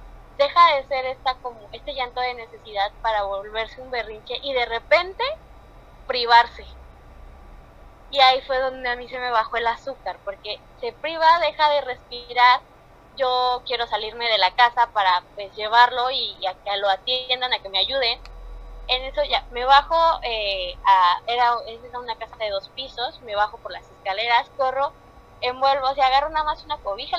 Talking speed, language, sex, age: 180 wpm, Spanish, female, 20-39